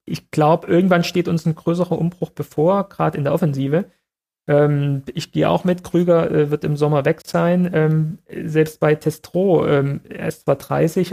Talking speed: 185 wpm